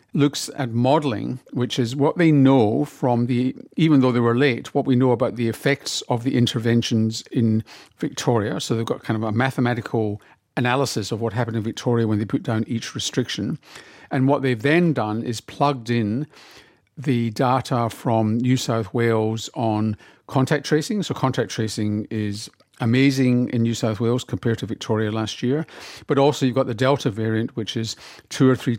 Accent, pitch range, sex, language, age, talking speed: British, 115-135 Hz, male, English, 50-69, 185 wpm